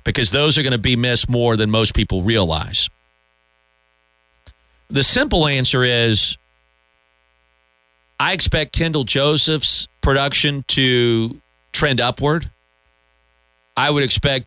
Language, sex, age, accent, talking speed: English, male, 40-59, American, 110 wpm